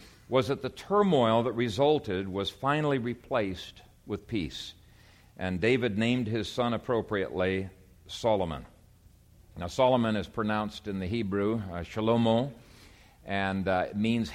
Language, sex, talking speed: English, male, 130 wpm